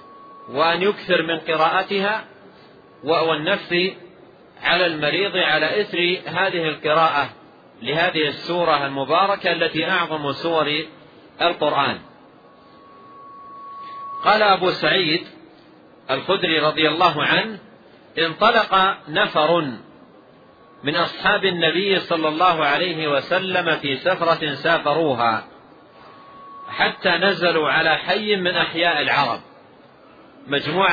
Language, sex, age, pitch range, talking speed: Arabic, male, 40-59, 160-200 Hz, 85 wpm